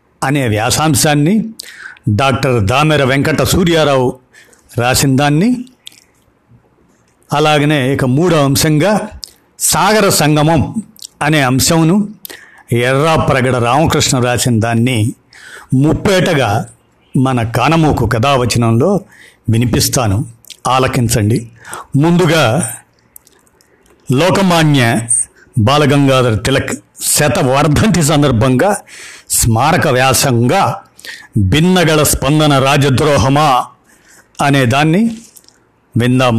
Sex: male